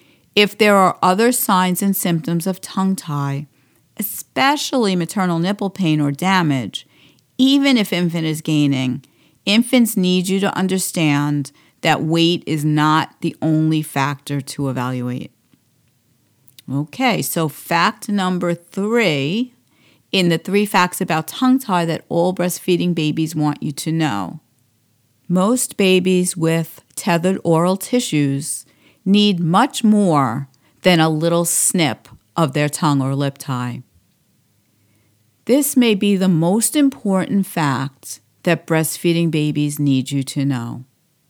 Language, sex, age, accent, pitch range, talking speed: English, female, 50-69, American, 140-190 Hz, 130 wpm